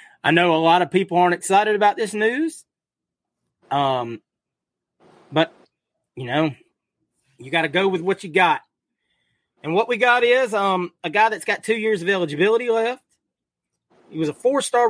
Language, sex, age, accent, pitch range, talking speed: English, male, 30-49, American, 160-220 Hz, 170 wpm